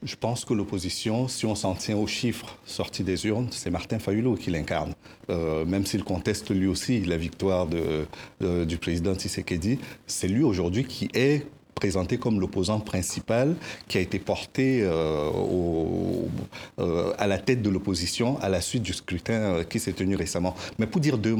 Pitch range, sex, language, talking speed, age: 95-125 Hz, male, French, 180 wpm, 50-69